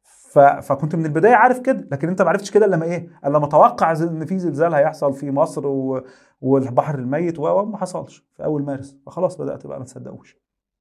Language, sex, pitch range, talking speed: Arabic, male, 135-165 Hz, 195 wpm